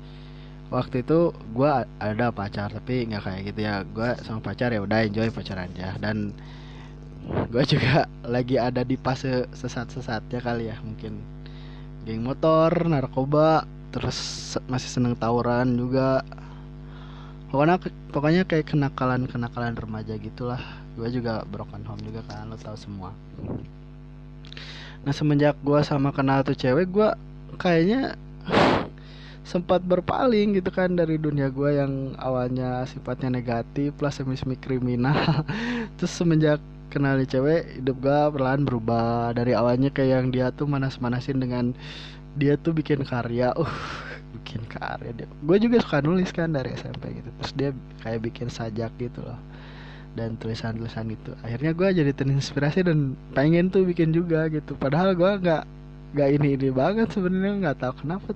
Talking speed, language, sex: 140 wpm, Indonesian, male